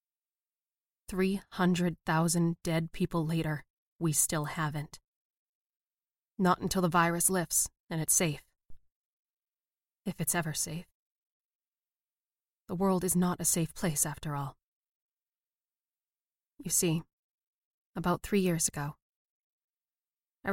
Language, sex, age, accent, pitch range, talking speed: English, female, 30-49, American, 165-185 Hz, 100 wpm